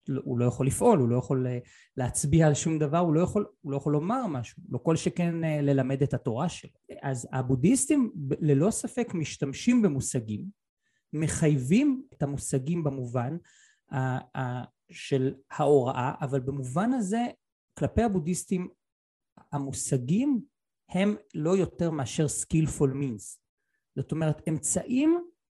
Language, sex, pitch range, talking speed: Hebrew, male, 135-195 Hz, 125 wpm